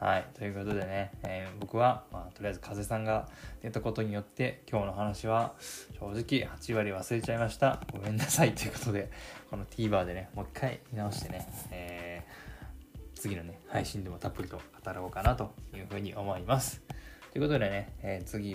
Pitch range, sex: 100-125 Hz, male